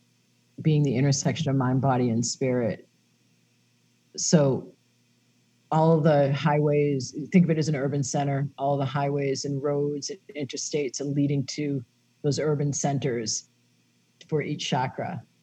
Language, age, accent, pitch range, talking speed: English, 50-69, American, 125-155 Hz, 135 wpm